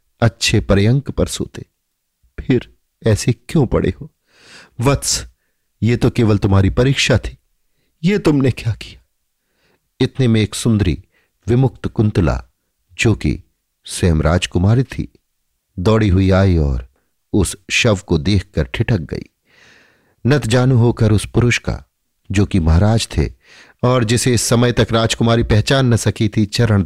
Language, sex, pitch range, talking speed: Hindi, male, 85-120 Hz, 140 wpm